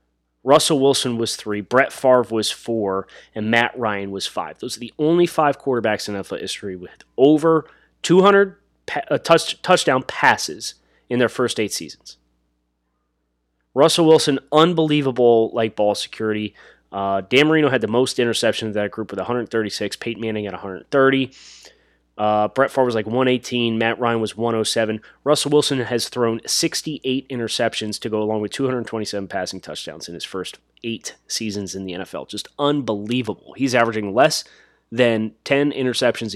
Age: 30-49